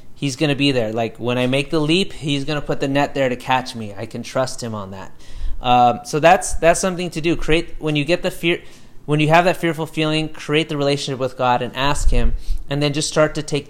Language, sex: English, male